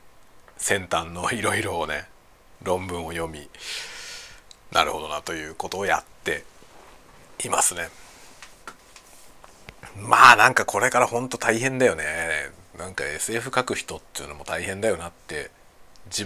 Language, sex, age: Japanese, male, 40-59